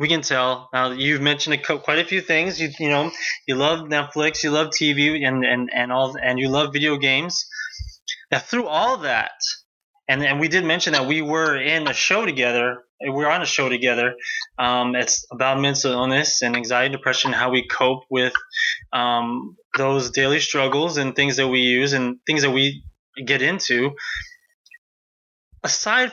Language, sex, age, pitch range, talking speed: English, male, 20-39, 130-160 Hz, 180 wpm